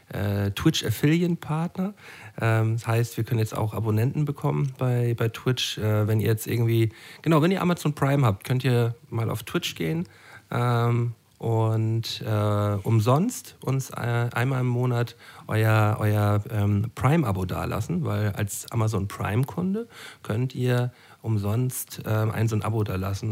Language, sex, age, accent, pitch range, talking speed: German, male, 40-59, German, 105-130 Hz, 135 wpm